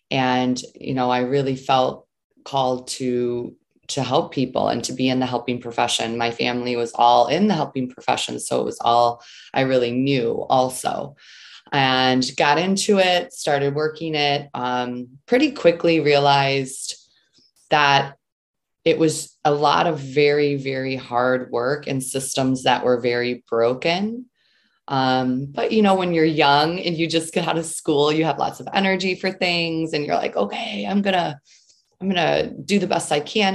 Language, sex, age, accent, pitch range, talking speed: English, female, 20-39, American, 130-155 Hz, 170 wpm